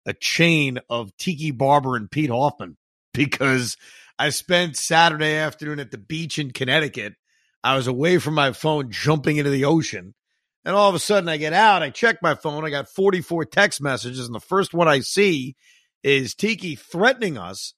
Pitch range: 125-175 Hz